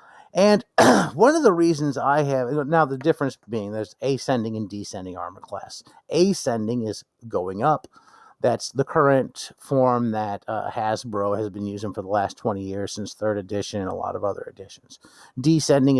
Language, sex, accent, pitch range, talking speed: English, male, American, 110-145 Hz, 175 wpm